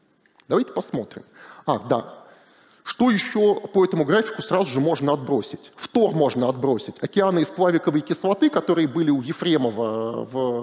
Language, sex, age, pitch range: Russian, male, 30-49, 135-195 Hz